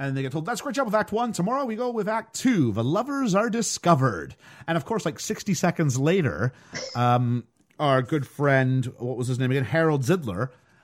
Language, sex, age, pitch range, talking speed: English, male, 40-59, 115-160 Hz, 215 wpm